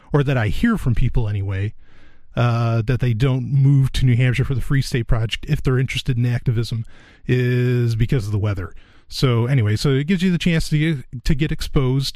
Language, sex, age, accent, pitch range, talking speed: English, male, 30-49, American, 120-150 Hz, 210 wpm